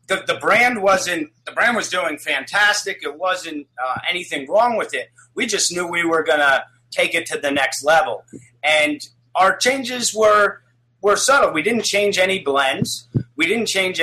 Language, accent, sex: English, American, male